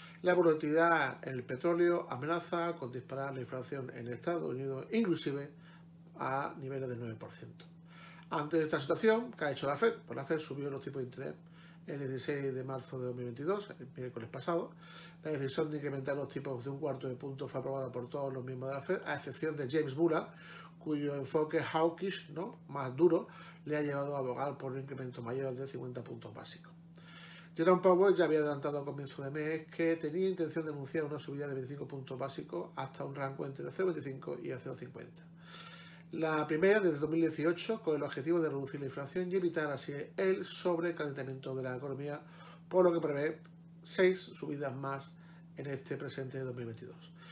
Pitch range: 135-170 Hz